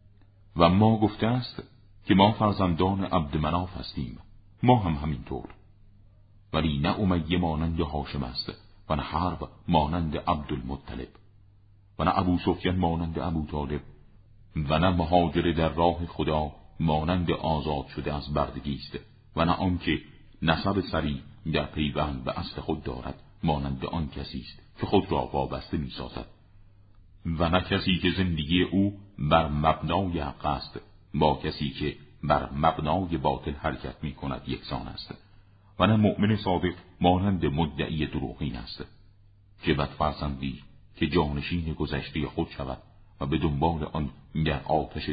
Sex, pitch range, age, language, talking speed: male, 75-95 Hz, 50-69, Persian, 140 wpm